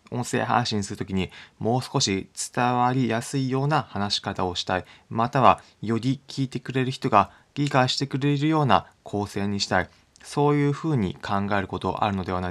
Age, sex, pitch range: 20-39, male, 95-120 Hz